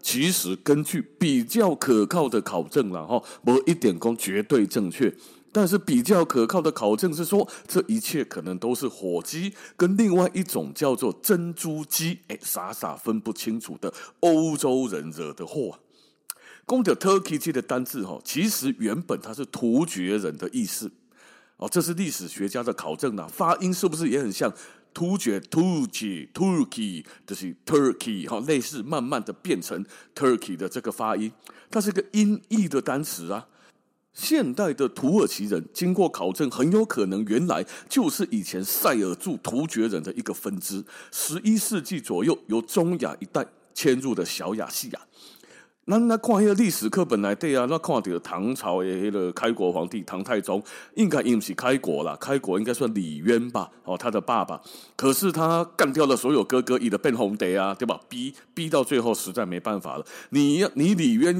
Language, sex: Chinese, male